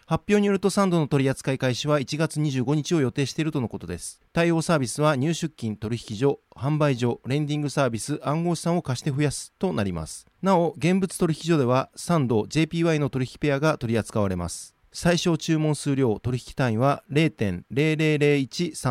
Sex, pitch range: male, 125-160 Hz